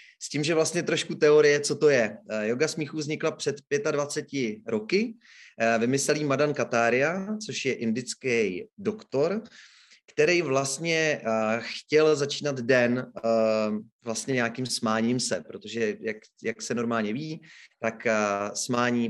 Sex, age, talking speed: male, 30-49, 125 wpm